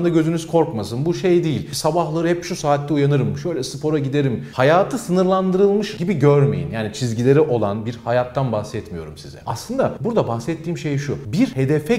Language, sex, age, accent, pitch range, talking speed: Turkish, male, 40-59, native, 115-180 Hz, 155 wpm